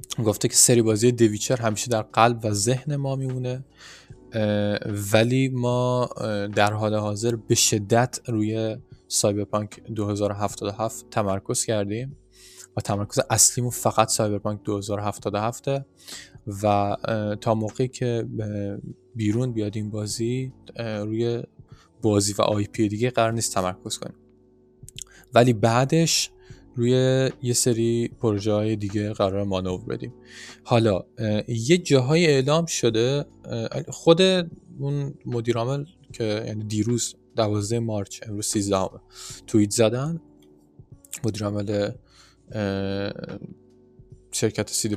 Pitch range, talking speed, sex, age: 105-125 Hz, 100 wpm, male, 10-29